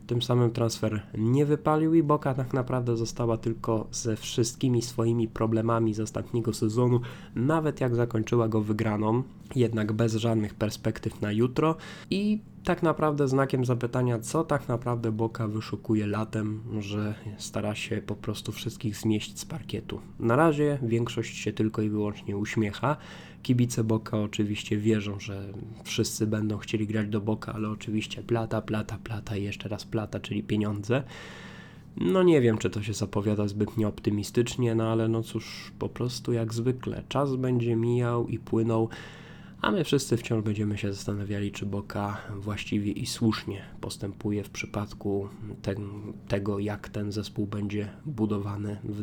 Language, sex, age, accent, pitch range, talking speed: Polish, male, 20-39, native, 105-120 Hz, 150 wpm